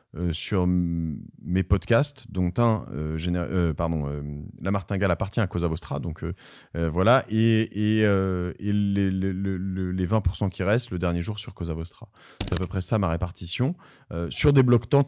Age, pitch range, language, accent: 30-49, 85-110 Hz, French, French